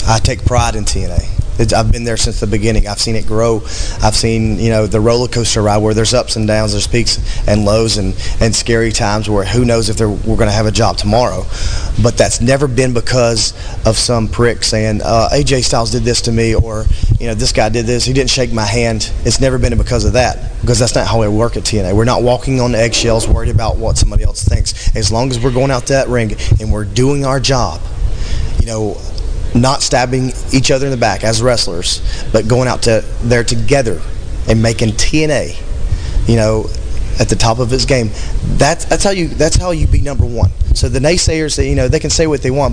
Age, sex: 20-39, male